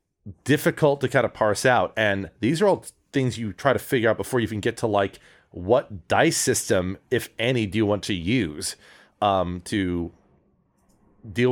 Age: 30-49